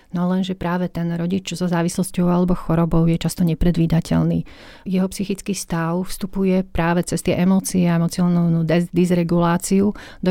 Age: 40-59